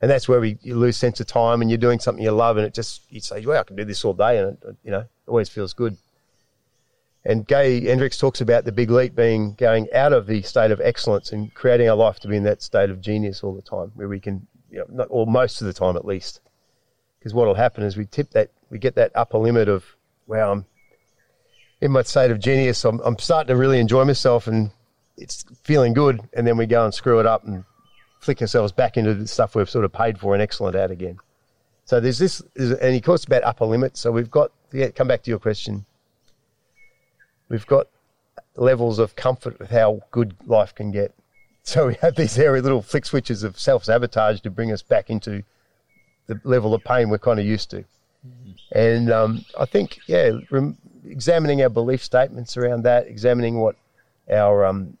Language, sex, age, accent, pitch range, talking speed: English, male, 40-59, Australian, 105-125 Hz, 220 wpm